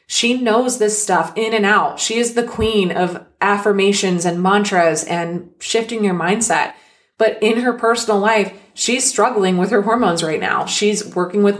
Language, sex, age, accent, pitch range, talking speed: English, female, 20-39, American, 190-245 Hz, 175 wpm